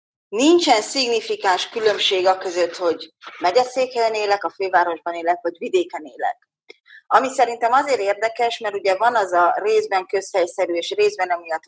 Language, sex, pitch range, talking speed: Hungarian, female, 175-230 Hz, 145 wpm